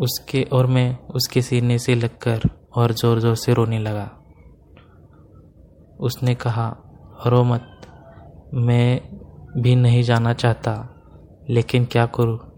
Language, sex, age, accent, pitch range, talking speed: Hindi, male, 20-39, native, 115-125 Hz, 120 wpm